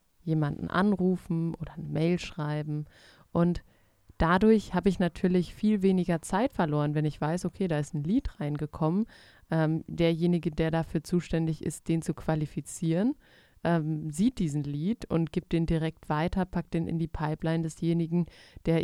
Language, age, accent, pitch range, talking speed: German, 30-49, German, 155-180 Hz, 155 wpm